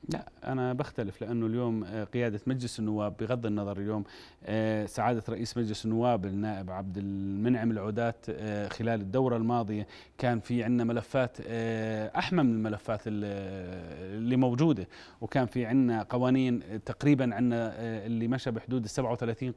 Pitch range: 110-140 Hz